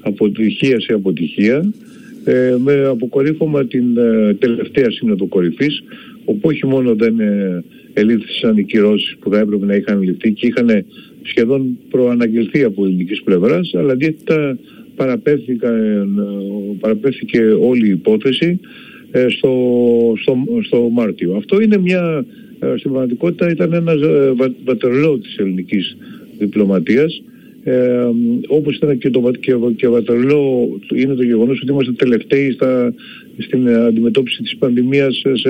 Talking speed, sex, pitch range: 120 wpm, male, 115-155 Hz